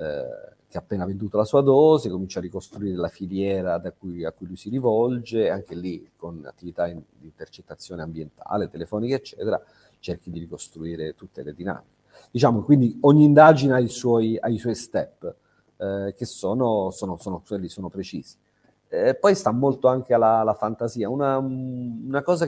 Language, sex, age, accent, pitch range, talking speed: Italian, male, 40-59, native, 100-135 Hz, 170 wpm